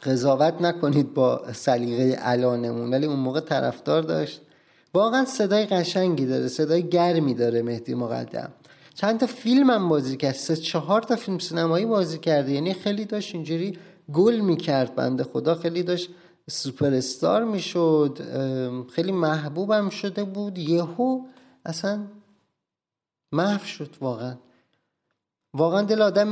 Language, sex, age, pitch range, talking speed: Persian, male, 30-49, 135-175 Hz, 130 wpm